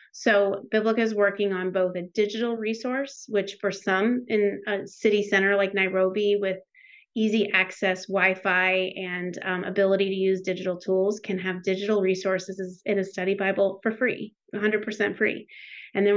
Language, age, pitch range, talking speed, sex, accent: English, 30-49, 190-215 Hz, 160 wpm, female, American